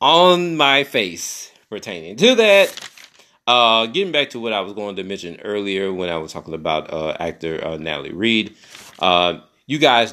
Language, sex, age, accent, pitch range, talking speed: English, male, 30-49, American, 90-115 Hz, 180 wpm